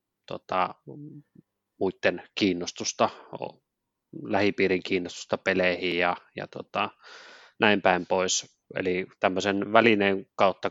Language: Finnish